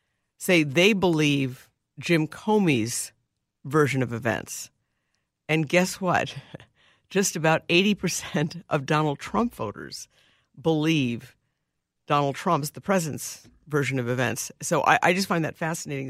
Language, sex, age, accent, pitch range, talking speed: English, female, 50-69, American, 140-180 Hz, 125 wpm